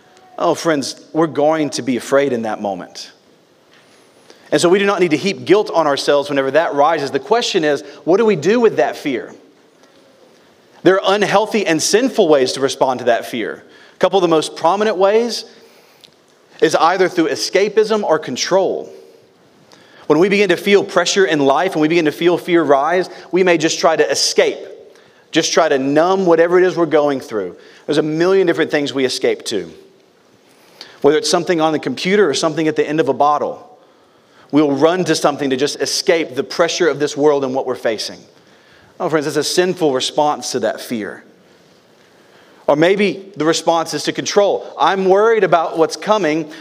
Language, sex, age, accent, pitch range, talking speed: English, male, 40-59, American, 155-200 Hz, 190 wpm